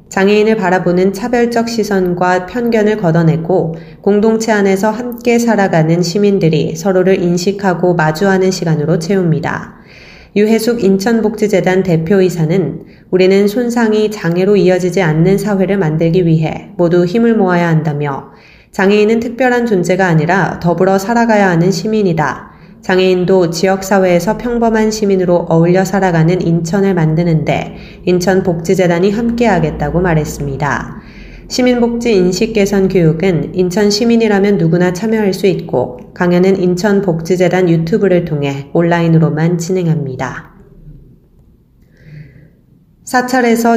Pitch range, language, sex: 170-210 Hz, Korean, female